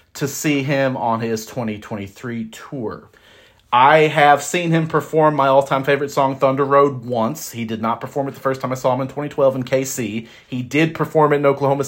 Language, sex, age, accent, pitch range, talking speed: English, male, 30-49, American, 115-140 Hz, 200 wpm